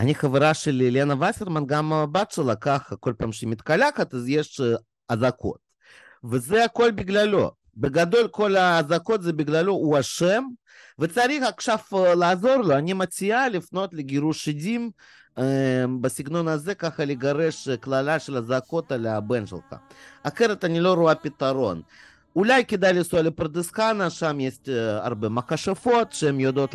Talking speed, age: 135 wpm, 30-49